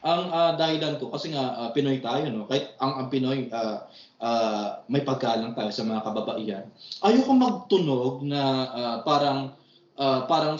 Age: 20-39